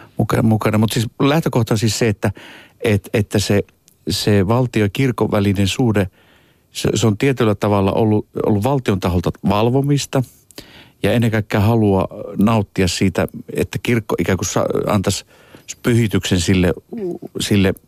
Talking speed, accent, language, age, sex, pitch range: 125 wpm, native, Finnish, 60-79, male, 95-120 Hz